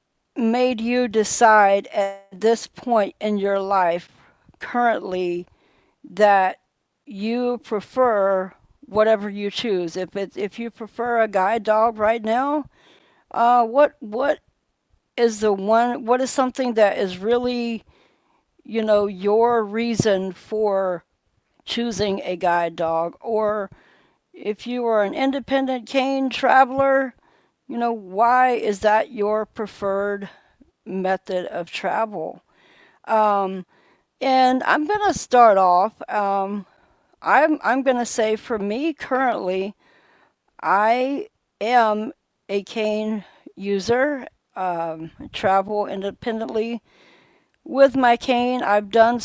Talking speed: 115 wpm